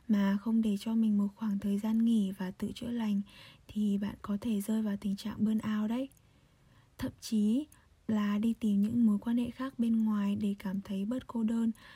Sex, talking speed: female, 210 wpm